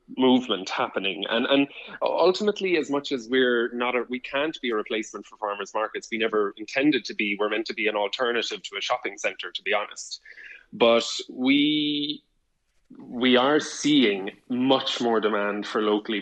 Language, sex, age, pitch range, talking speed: English, male, 20-39, 110-140 Hz, 175 wpm